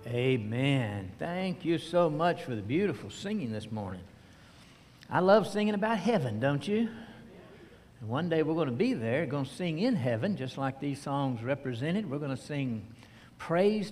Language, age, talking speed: English, 60-79, 175 wpm